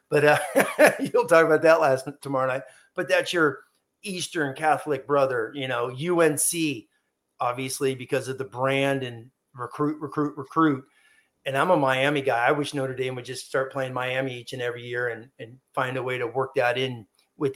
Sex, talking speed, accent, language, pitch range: male, 190 wpm, American, English, 130-160 Hz